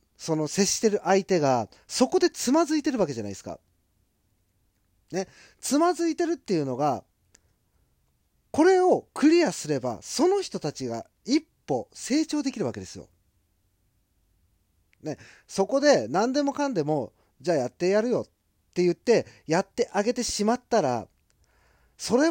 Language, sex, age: Japanese, male, 40-59